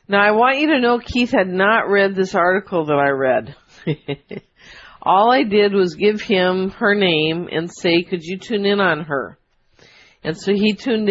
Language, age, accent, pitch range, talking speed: English, 50-69, American, 160-195 Hz, 190 wpm